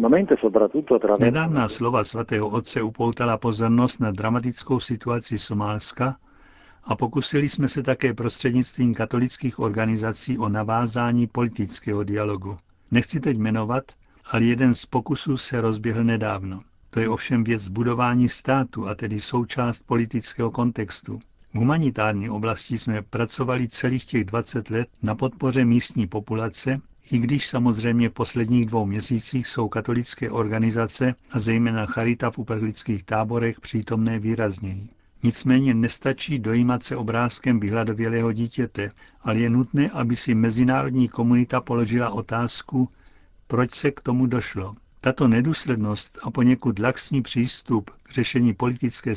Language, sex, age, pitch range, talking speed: Czech, male, 50-69, 110-125 Hz, 125 wpm